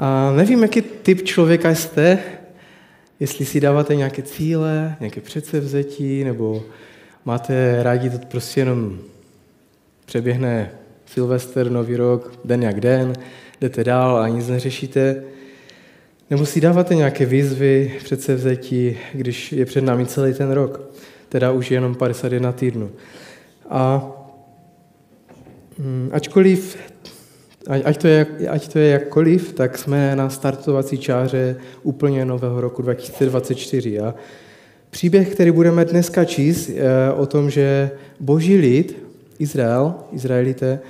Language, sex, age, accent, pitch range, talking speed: Czech, male, 20-39, native, 125-150 Hz, 120 wpm